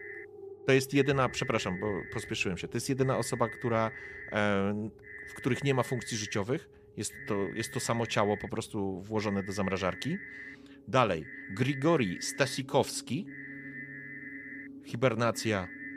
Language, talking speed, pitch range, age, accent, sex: Polish, 125 wpm, 105-140 Hz, 30-49, native, male